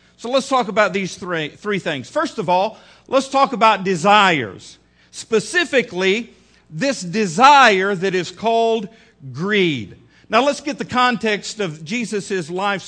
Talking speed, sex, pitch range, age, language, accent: 140 wpm, male, 205-265 Hz, 50-69, English, American